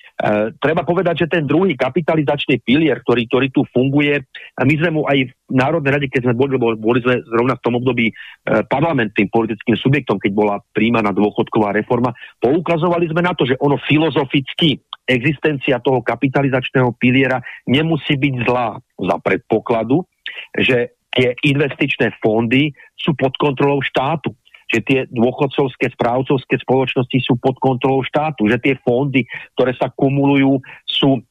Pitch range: 125-140 Hz